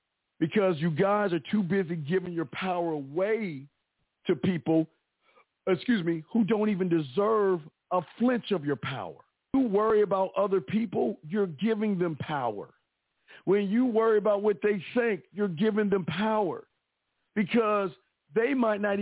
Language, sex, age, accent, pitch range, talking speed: English, male, 50-69, American, 160-210 Hz, 150 wpm